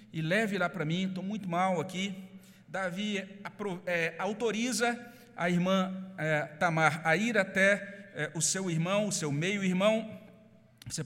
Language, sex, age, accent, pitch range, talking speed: Portuguese, male, 50-69, Brazilian, 175-220 Hz, 130 wpm